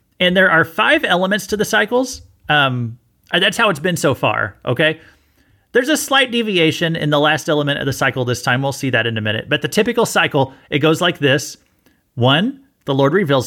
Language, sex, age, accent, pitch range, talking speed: English, male, 30-49, American, 140-190 Hz, 210 wpm